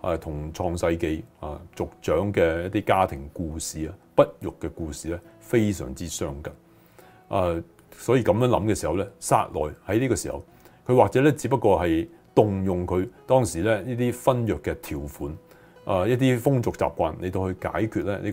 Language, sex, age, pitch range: Chinese, male, 30-49, 85-115 Hz